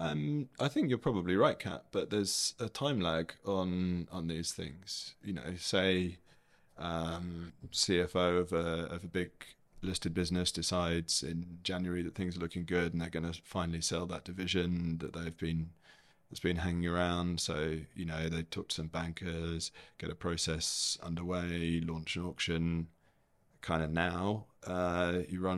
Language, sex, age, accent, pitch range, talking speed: English, male, 30-49, British, 85-90 Hz, 170 wpm